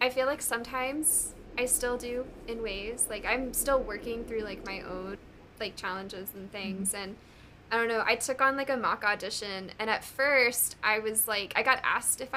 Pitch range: 220-250 Hz